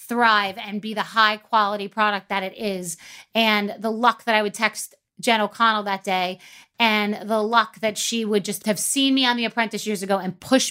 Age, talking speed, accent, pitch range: 30-49, 215 wpm, American, 200-230 Hz